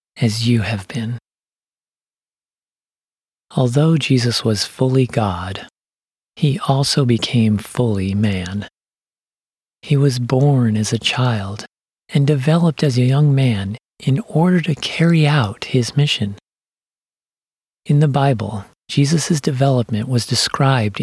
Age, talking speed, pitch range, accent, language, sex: 40-59, 115 wpm, 110-145 Hz, American, English, male